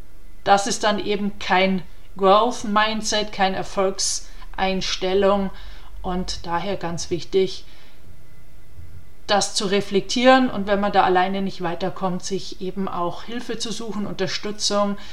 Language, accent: German, German